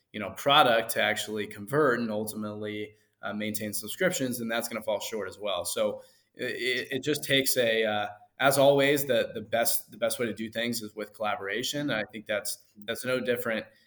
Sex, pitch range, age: male, 110-130 Hz, 20-39